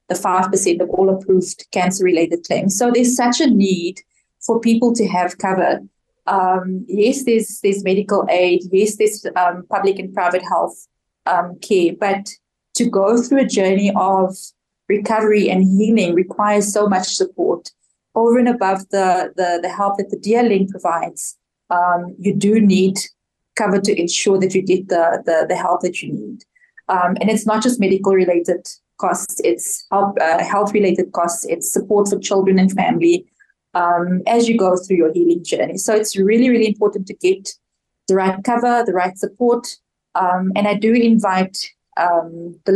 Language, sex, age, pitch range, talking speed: English, female, 20-39, 185-220 Hz, 175 wpm